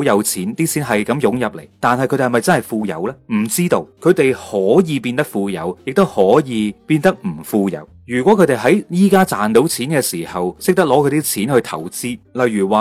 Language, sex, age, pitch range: Chinese, male, 30-49, 110-150 Hz